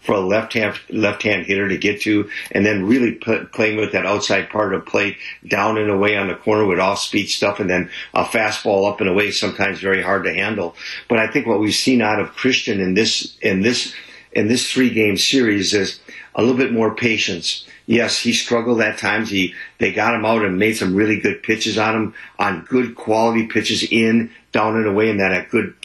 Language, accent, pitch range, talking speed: English, American, 105-120 Hz, 225 wpm